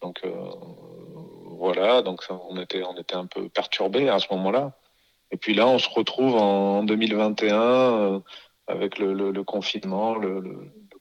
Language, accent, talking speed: French, French, 170 wpm